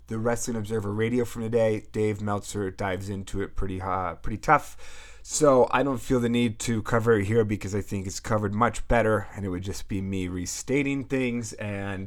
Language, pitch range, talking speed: English, 100-120 Hz, 205 wpm